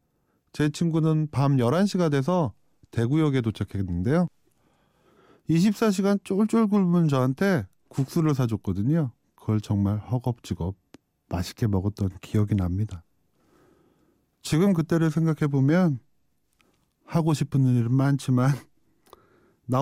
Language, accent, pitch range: Korean, native, 115-160 Hz